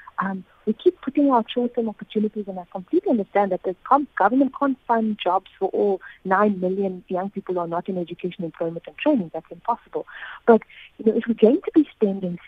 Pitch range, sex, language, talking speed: 185-250 Hz, female, English, 200 wpm